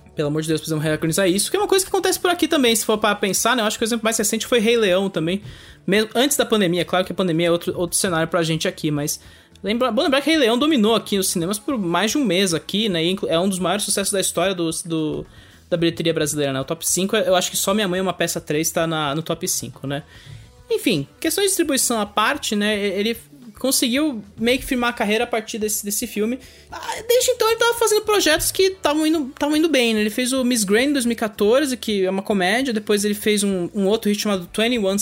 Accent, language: Brazilian, English